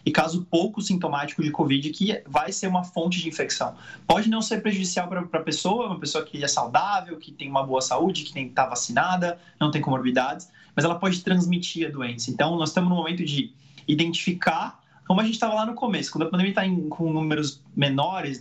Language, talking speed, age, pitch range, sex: Portuguese, 205 wpm, 20-39, 150-185 Hz, male